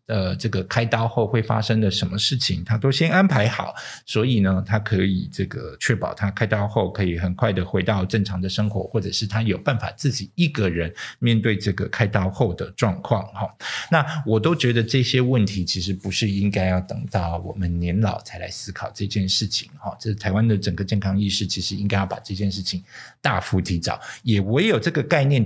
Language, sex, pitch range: Chinese, male, 95-115 Hz